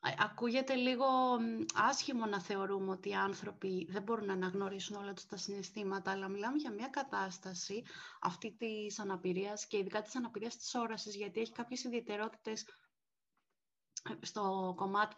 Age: 30-49